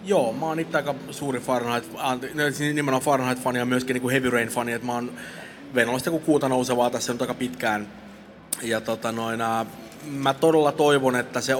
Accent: native